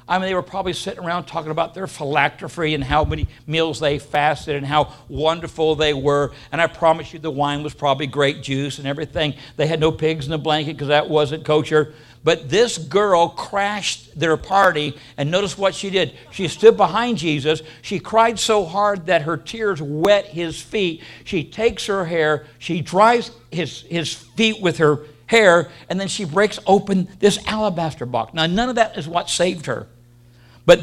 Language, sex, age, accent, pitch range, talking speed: English, male, 60-79, American, 150-195 Hz, 190 wpm